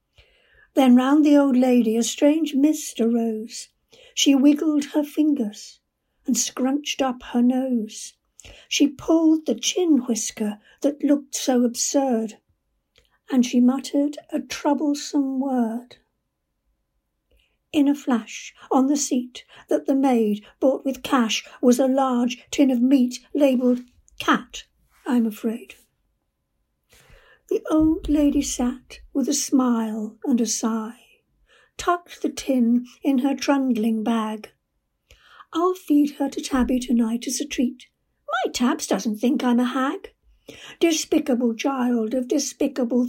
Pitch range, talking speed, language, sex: 240-290 Hz, 130 wpm, English, female